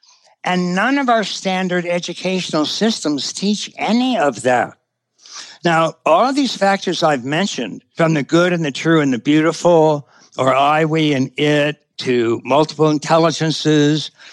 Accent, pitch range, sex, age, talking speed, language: American, 145-190 Hz, male, 60-79, 145 wpm, English